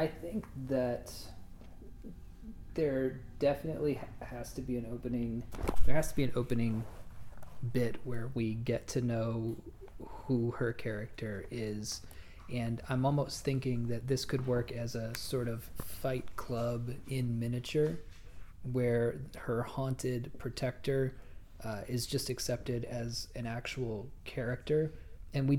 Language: English